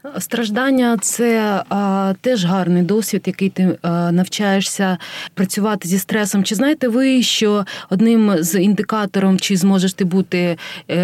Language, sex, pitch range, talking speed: Ukrainian, female, 180-205 Hz, 130 wpm